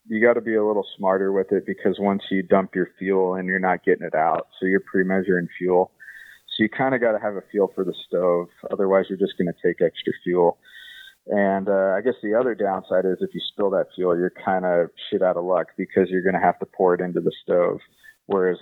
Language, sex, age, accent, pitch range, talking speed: English, male, 30-49, American, 95-115 Hz, 250 wpm